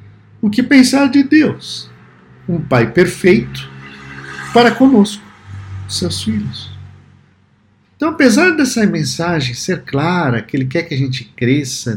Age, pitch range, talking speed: 50-69, 105-170 Hz, 125 wpm